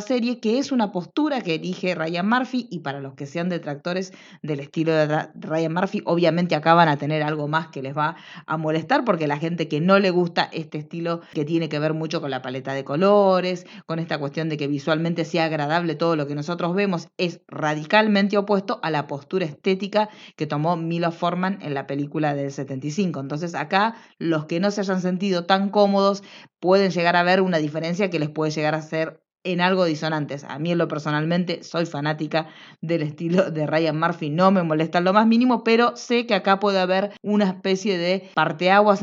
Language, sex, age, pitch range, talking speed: Spanish, female, 20-39, 155-200 Hz, 205 wpm